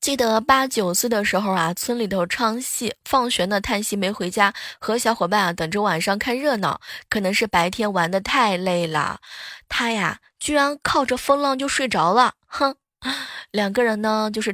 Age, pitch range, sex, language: 20-39, 195-250 Hz, female, Chinese